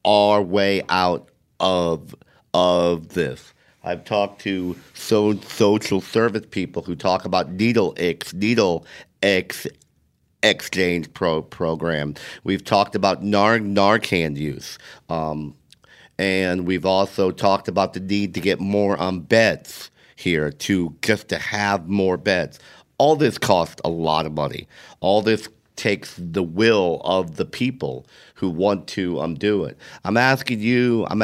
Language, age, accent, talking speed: English, 50-69, American, 145 wpm